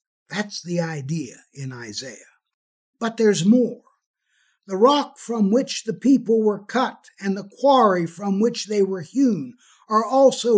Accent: American